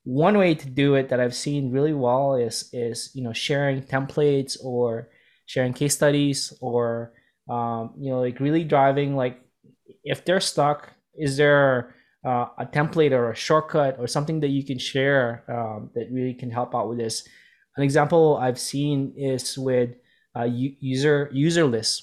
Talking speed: 170 wpm